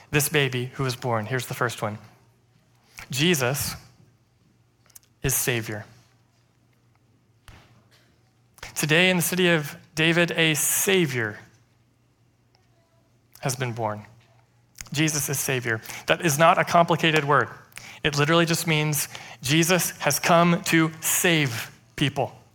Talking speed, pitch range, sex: 110 wpm, 125-205 Hz, male